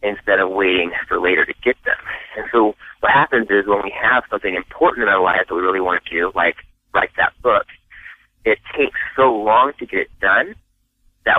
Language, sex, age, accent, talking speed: English, male, 30-49, American, 210 wpm